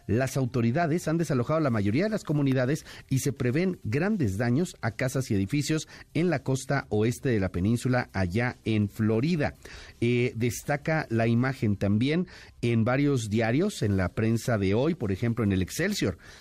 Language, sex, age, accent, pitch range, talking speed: Spanish, male, 50-69, Mexican, 105-140 Hz, 170 wpm